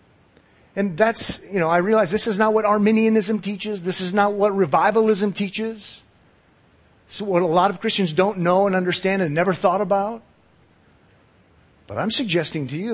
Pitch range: 110-175 Hz